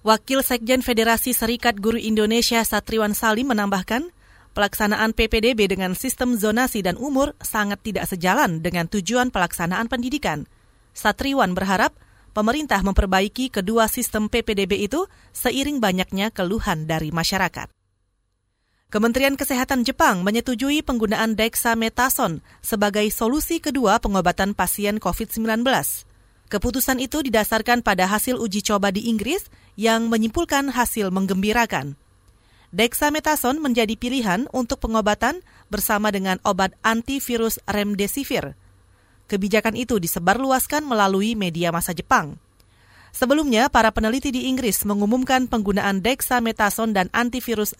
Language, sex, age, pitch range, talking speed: Indonesian, female, 30-49, 195-250 Hz, 110 wpm